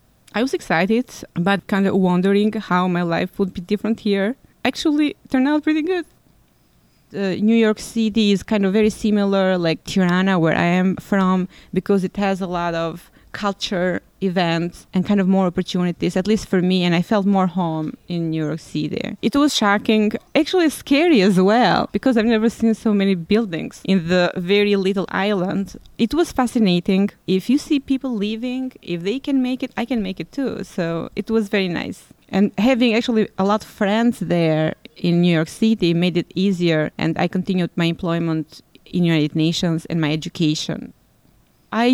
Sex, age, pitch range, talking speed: female, 20-39, 180-220 Hz, 190 wpm